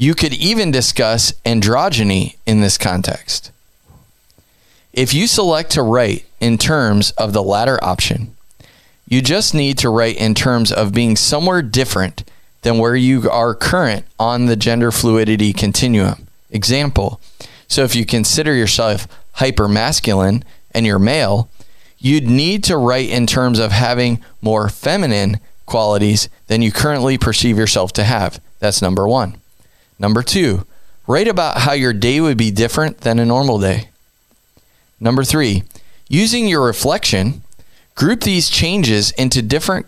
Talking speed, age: 145 wpm, 20-39